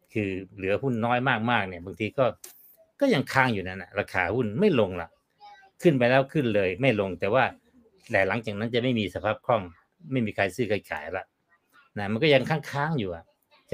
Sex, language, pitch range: male, Thai, 105-150 Hz